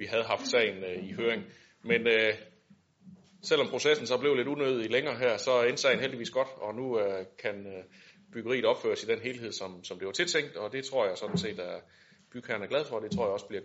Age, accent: 30-49, native